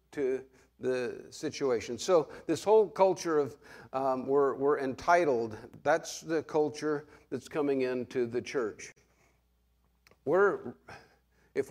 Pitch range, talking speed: 110-155 Hz, 115 wpm